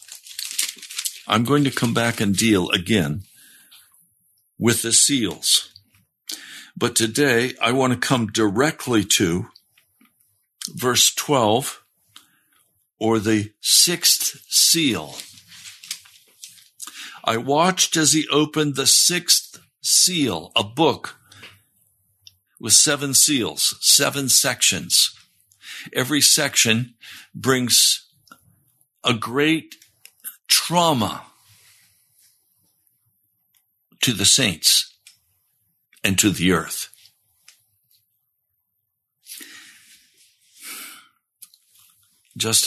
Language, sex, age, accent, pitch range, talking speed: English, male, 60-79, American, 95-125 Hz, 75 wpm